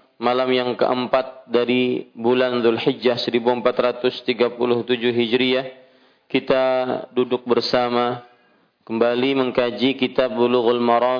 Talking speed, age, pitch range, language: 85 wpm, 40-59, 120-130 Hz, Malay